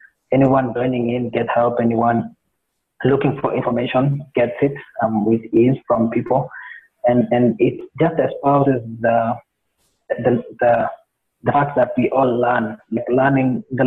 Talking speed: 145 wpm